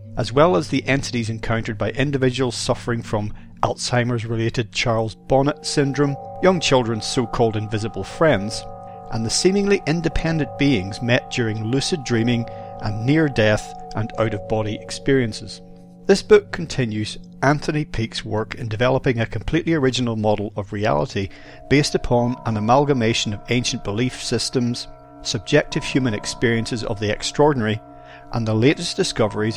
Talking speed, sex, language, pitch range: 130 wpm, male, English, 105-135 Hz